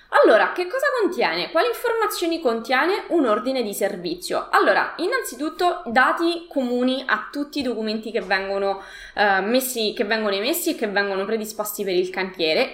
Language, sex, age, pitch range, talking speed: Italian, female, 20-39, 205-280 Hz, 155 wpm